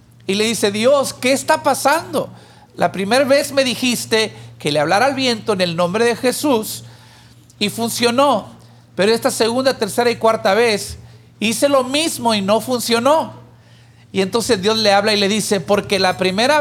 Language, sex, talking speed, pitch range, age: English, male, 175 wpm, 170-230 Hz, 50-69